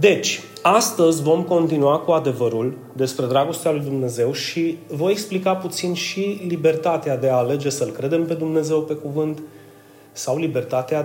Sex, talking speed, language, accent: male, 145 wpm, Romanian, native